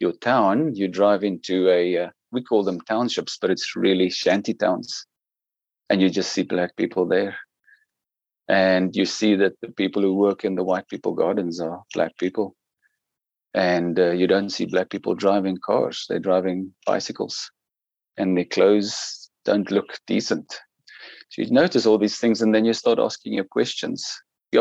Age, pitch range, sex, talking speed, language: 40-59, 95-105 Hz, male, 175 wpm, English